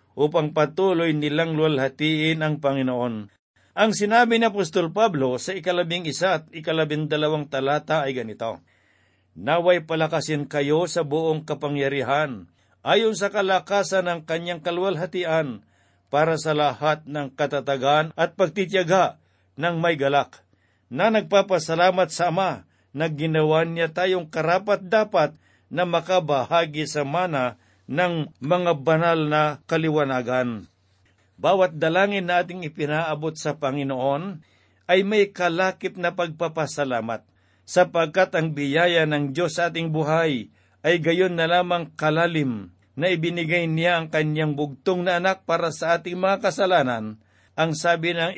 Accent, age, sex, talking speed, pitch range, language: native, 50-69, male, 125 wpm, 145-175 Hz, Filipino